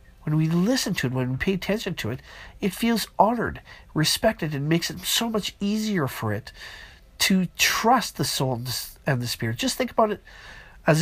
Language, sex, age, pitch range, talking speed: English, male, 50-69, 130-185 Hz, 190 wpm